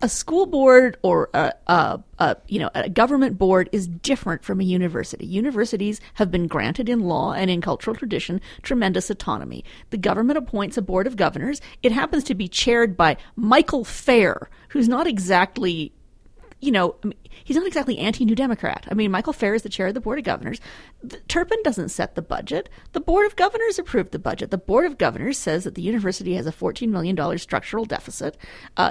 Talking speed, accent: 195 wpm, American